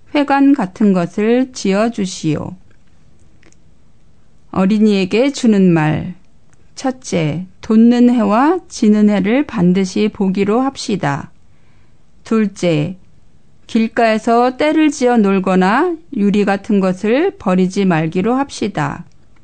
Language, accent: Korean, native